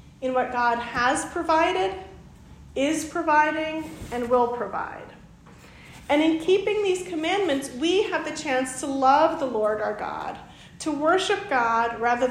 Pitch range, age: 255-335 Hz, 40-59